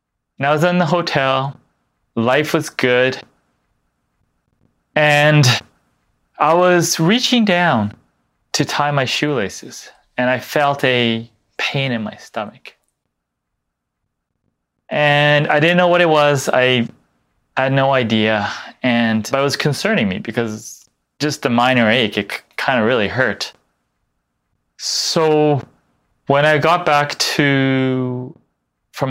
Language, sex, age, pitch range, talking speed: English, male, 20-39, 110-145 Hz, 120 wpm